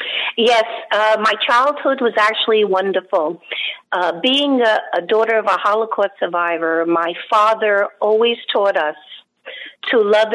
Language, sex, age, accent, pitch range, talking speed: English, female, 50-69, American, 185-225 Hz, 135 wpm